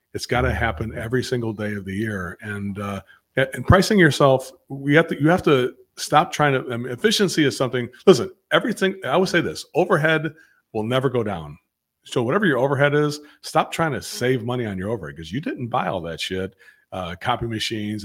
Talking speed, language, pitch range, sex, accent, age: 210 wpm, English, 100-135 Hz, male, American, 40-59